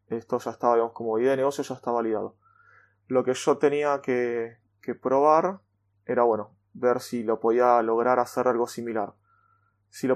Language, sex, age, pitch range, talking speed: Spanish, male, 20-39, 110-135 Hz, 175 wpm